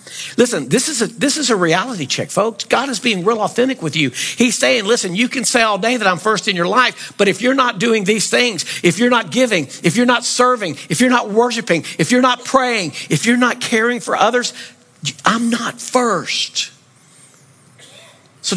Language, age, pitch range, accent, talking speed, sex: English, 50-69, 140-205 Hz, American, 200 wpm, male